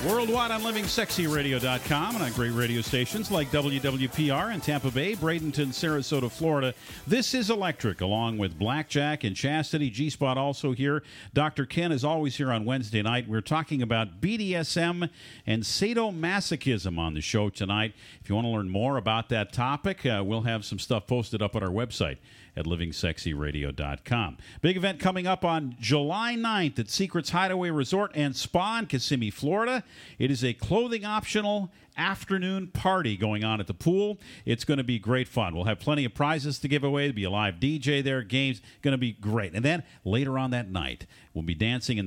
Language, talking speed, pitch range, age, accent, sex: English, 180 wpm, 110-155 Hz, 50-69, American, male